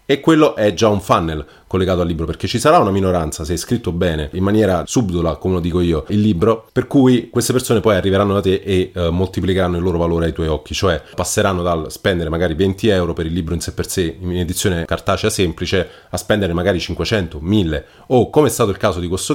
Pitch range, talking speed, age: 85-105 Hz, 235 wpm, 30-49